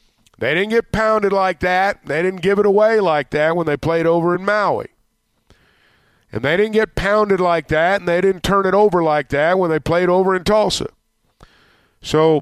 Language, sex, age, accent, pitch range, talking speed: English, male, 50-69, American, 145-180 Hz, 200 wpm